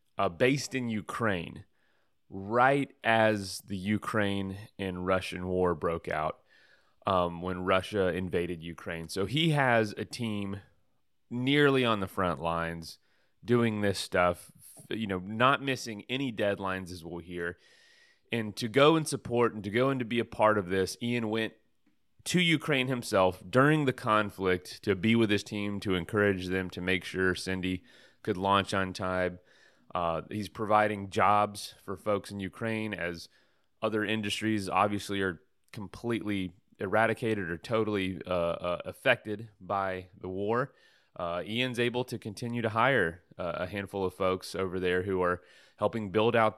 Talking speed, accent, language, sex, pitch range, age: 155 wpm, American, English, male, 95-120 Hz, 30-49